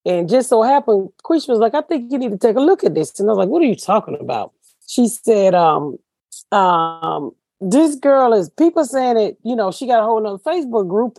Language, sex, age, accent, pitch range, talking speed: English, female, 40-59, American, 180-270 Hz, 240 wpm